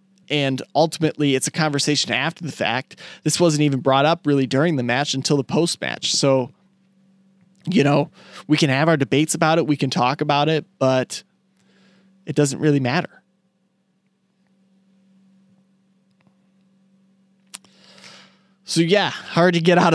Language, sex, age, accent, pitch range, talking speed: English, male, 20-39, American, 140-185 Hz, 140 wpm